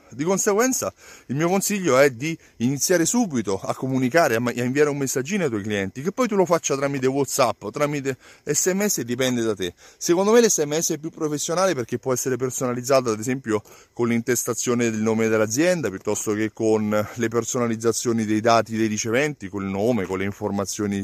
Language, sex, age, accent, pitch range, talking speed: Italian, male, 30-49, native, 110-150 Hz, 180 wpm